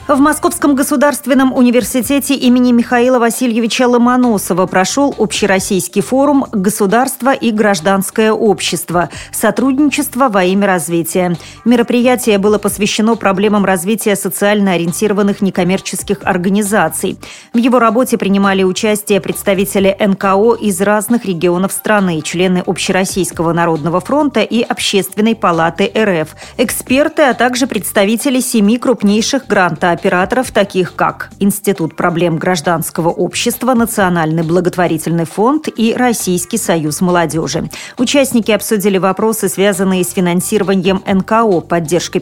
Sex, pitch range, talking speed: female, 180-235 Hz, 105 wpm